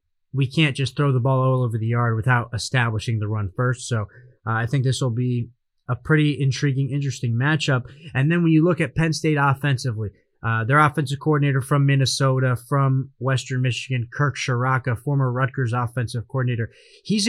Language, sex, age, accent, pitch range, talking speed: English, male, 30-49, American, 120-145 Hz, 180 wpm